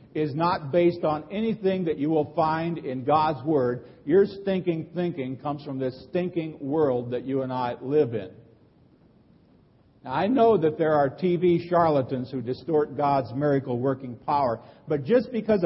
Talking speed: 160 wpm